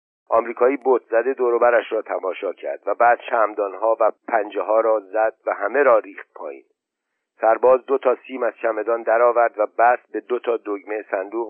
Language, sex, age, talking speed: Persian, male, 50-69, 185 wpm